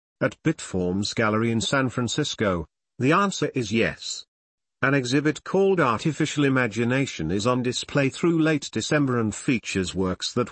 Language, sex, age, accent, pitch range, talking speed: English, male, 50-69, British, 110-145 Hz, 145 wpm